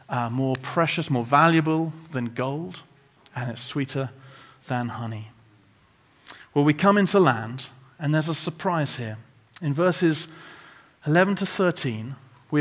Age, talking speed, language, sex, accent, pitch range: 40-59, 135 wpm, English, male, British, 140-195 Hz